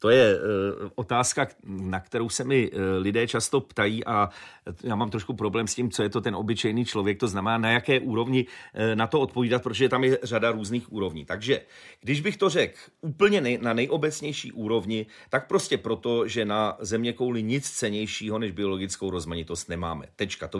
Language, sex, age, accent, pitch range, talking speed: Czech, male, 30-49, native, 105-135 Hz, 190 wpm